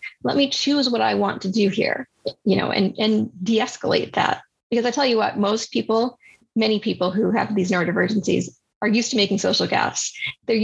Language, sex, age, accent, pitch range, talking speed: English, female, 30-49, American, 205-265 Hz, 195 wpm